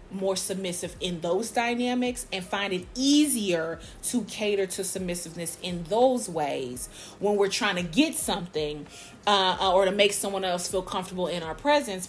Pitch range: 180-215 Hz